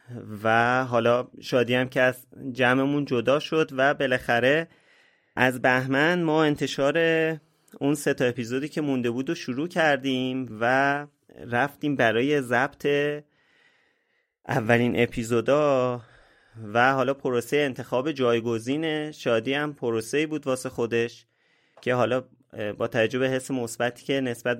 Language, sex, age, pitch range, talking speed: Persian, male, 30-49, 115-135 Hz, 115 wpm